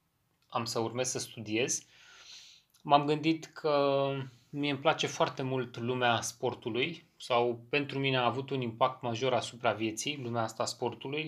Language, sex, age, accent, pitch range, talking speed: Romanian, male, 30-49, native, 115-135 Hz, 150 wpm